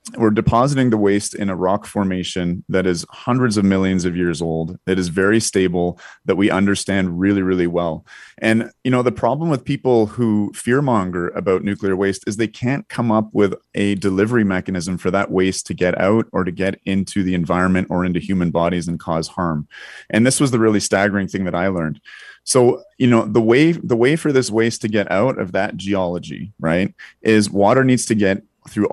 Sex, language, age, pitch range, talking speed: male, English, 30-49, 90-115 Hz, 205 wpm